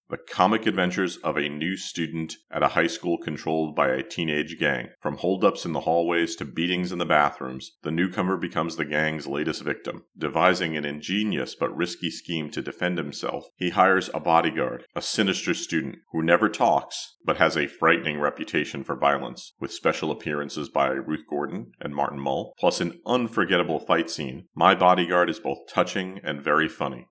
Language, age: English, 40-59